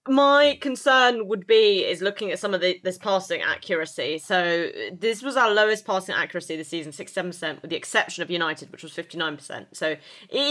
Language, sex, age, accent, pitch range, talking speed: English, female, 20-39, British, 175-220 Hz, 185 wpm